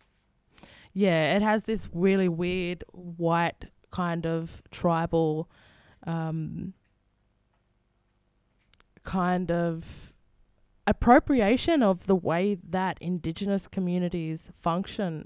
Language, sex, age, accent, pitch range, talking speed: English, female, 20-39, Australian, 150-180 Hz, 85 wpm